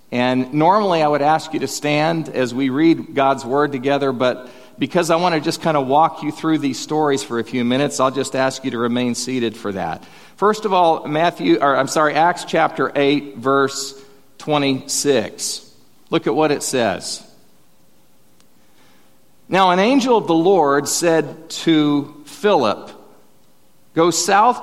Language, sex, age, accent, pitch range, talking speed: English, male, 50-69, American, 140-180 Hz, 165 wpm